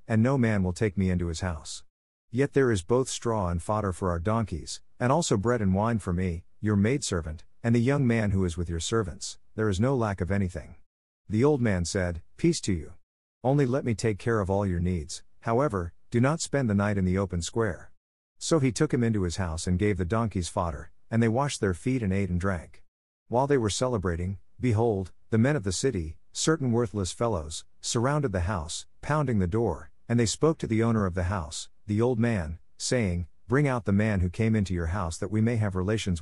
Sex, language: male, English